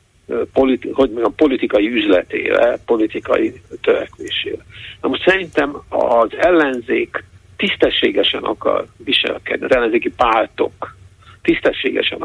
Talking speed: 100 wpm